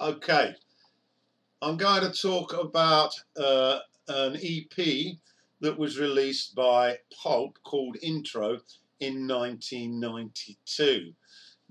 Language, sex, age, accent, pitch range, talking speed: English, male, 50-69, British, 135-175 Hz, 90 wpm